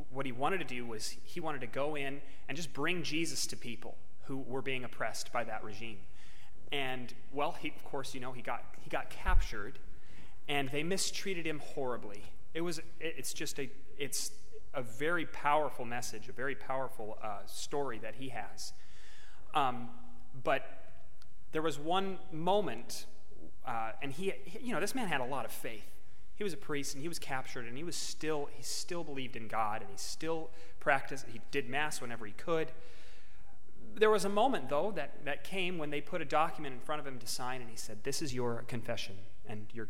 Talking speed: 200 wpm